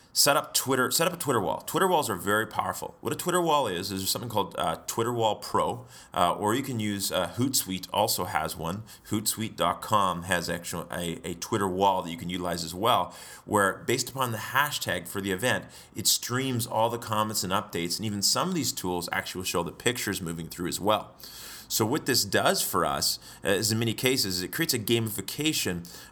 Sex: male